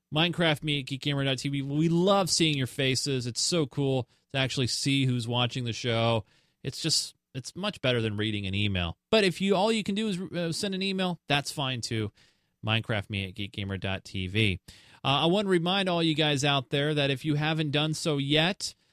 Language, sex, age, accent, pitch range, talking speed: English, male, 30-49, American, 120-160 Hz, 205 wpm